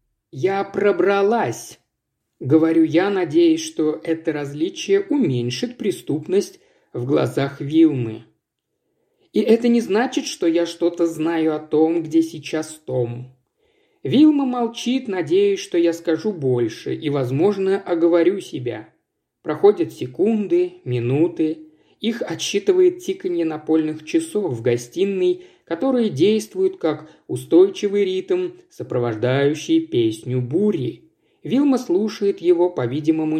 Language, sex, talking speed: Russian, male, 105 wpm